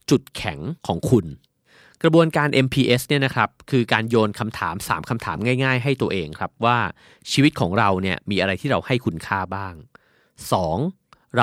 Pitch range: 95-130 Hz